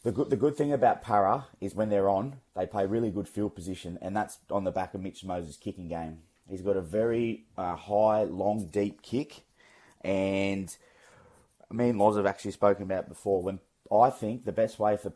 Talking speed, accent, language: 210 wpm, Australian, English